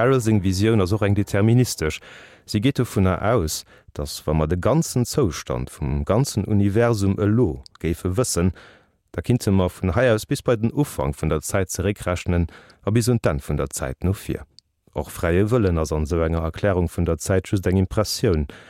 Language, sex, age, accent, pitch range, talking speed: Danish, male, 40-59, German, 85-110 Hz, 185 wpm